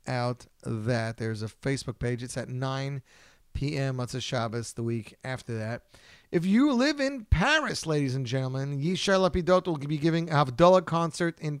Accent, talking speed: American, 170 wpm